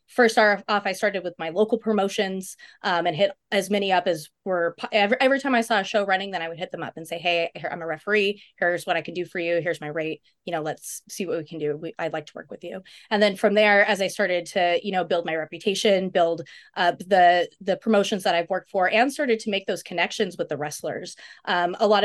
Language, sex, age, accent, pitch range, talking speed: English, female, 20-39, American, 170-205 Hz, 260 wpm